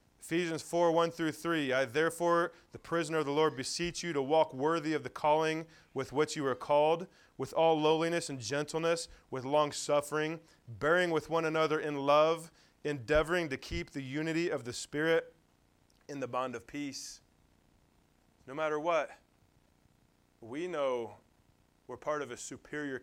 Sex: male